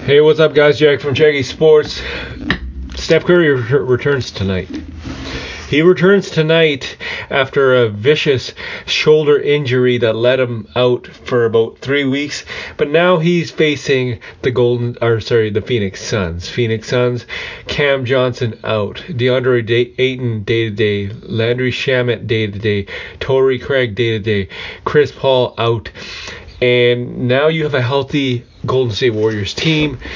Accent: American